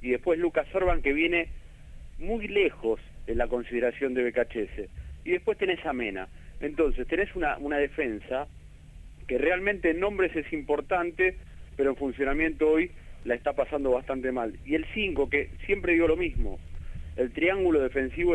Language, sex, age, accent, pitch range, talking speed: Spanish, male, 40-59, Argentinian, 115-160 Hz, 160 wpm